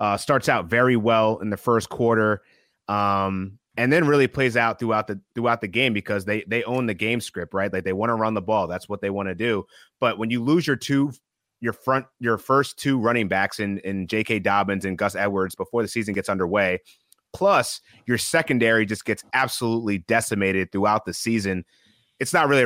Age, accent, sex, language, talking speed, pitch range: 30-49, American, male, English, 210 wpm, 100-120 Hz